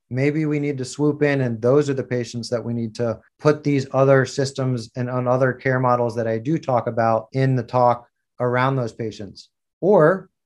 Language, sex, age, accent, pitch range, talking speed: English, male, 30-49, American, 120-140 Hz, 205 wpm